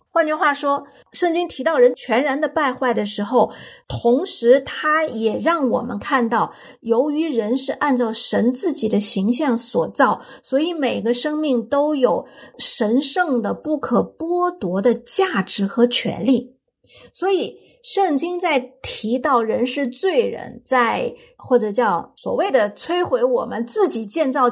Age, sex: 50-69, female